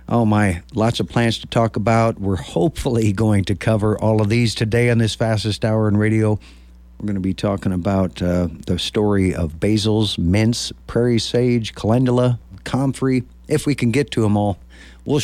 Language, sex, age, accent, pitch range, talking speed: English, male, 50-69, American, 90-115 Hz, 185 wpm